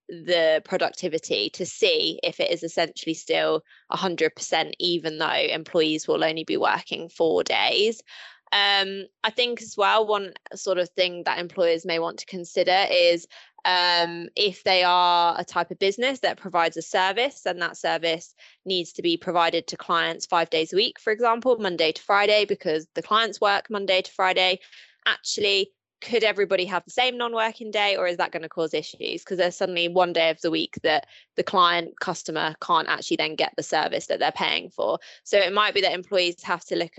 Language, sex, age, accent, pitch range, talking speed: English, female, 20-39, British, 170-210 Hz, 190 wpm